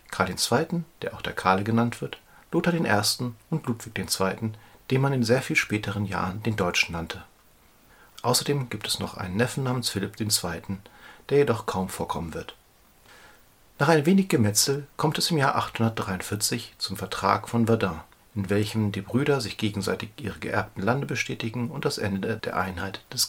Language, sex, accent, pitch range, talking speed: German, male, German, 100-130 Hz, 170 wpm